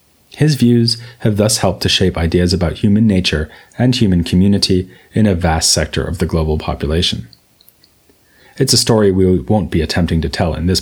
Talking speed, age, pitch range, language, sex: 185 wpm, 30-49, 85-115 Hz, English, male